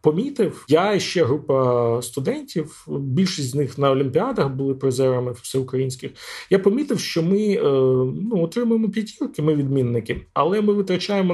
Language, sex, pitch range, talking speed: Ukrainian, male, 135-195 Hz, 145 wpm